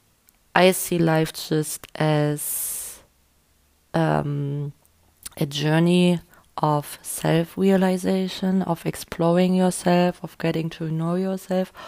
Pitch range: 150-170 Hz